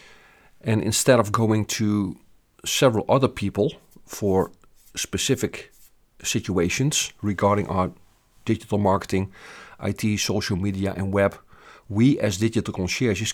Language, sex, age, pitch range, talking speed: English, male, 50-69, 100-115 Hz, 110 wpm